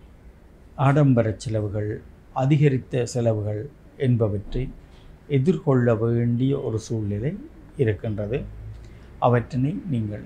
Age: 50-69